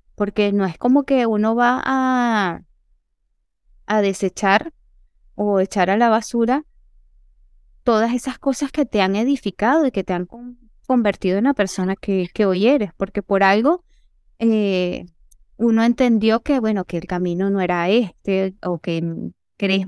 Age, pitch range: 20-39, 190-250 Hz